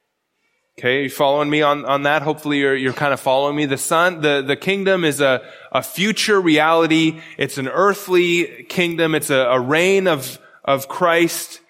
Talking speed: 180 wpm